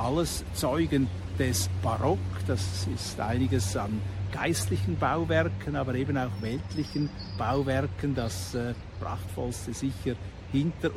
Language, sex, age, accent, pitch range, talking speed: German, male, 60-79, Austrian, 115-155 Hz, 110 wpm